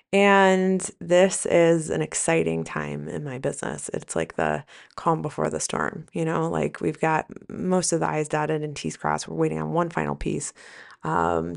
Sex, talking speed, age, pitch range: female, 185 wpm, 20-39, 145-205 Hz